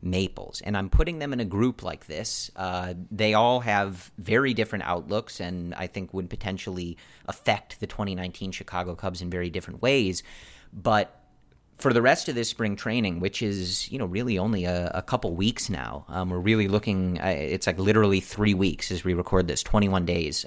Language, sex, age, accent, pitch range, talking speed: English, male, 30-49, American, 90-110 Hz, 190 wpm